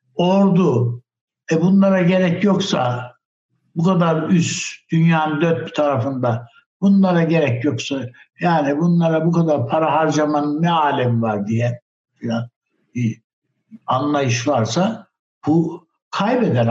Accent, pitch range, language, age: native, 130-195 Hz, Turkish, 60-79